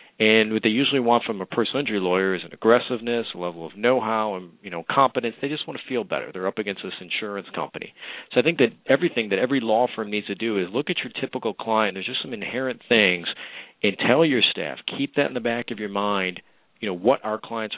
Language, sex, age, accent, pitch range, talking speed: English, male, 40-59, American, 95-120 Hz, 245 wpm